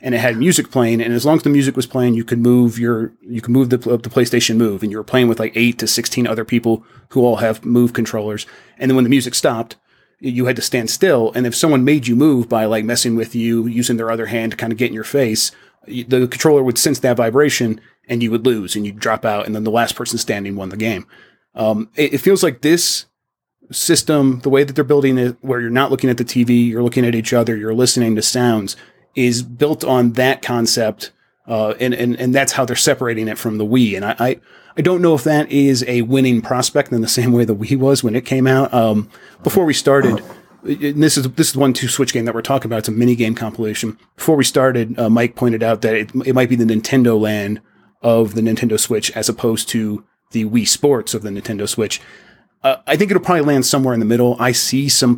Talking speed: 250 wpm